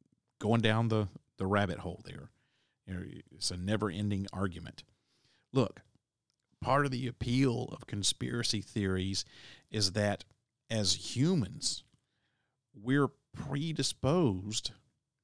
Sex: male